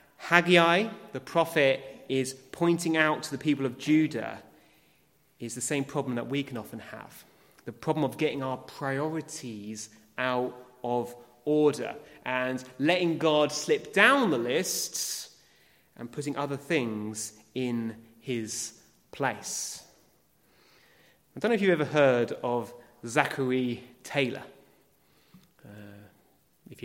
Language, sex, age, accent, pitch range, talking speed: English, male, 30-49, British, 120-160 Hz, 120 wpm